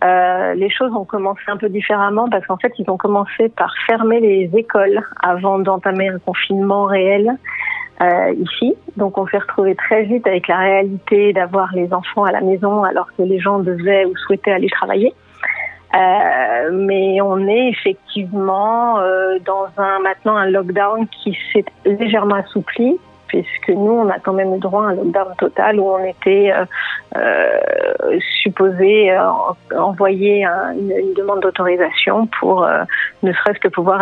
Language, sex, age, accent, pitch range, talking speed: French, female, 40-59, French, 190-215 Hz, 165 wpm